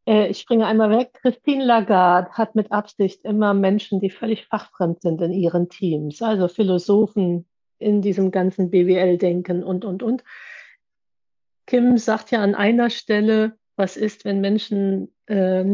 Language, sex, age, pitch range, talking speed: German, female, 50-69, 190-230 Hz, 145 wpm